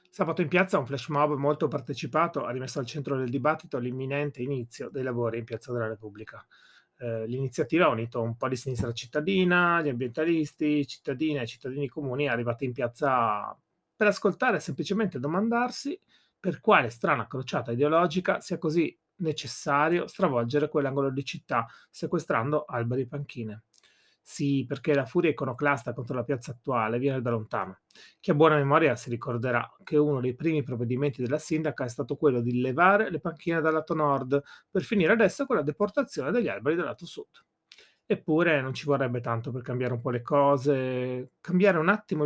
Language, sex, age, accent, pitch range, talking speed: Italian, male, 30-49, native, 130-170 Hz, 170 wpm